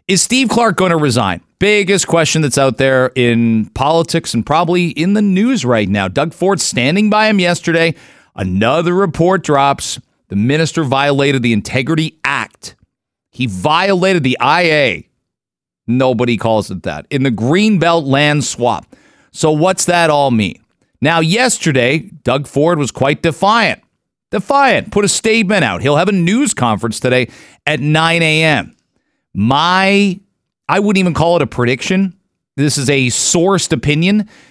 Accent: American